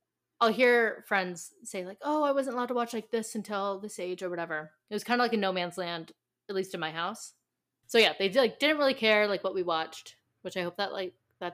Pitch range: 165-225 Hz